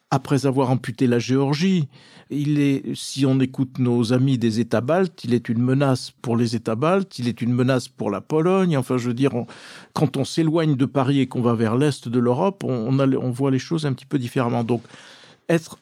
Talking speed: 230 wpm